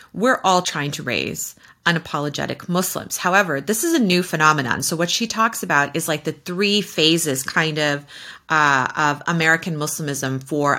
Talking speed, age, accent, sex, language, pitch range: 165 wpm, 30-49, American, female, English, 145-205 Hz